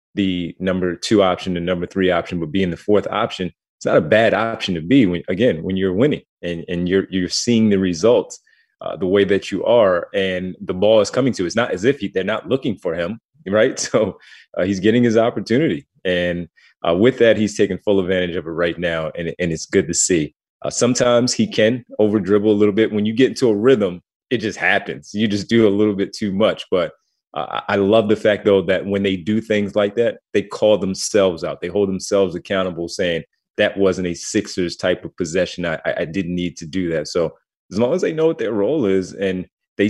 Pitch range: 90-110 Hz